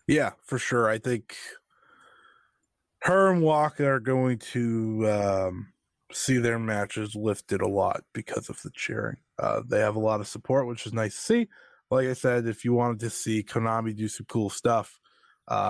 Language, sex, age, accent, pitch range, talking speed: English, male, 20-39, American, 105-140 Hz, 185 wpm